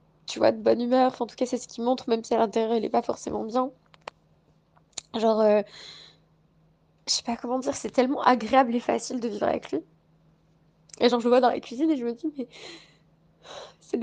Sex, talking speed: female, 220 wpm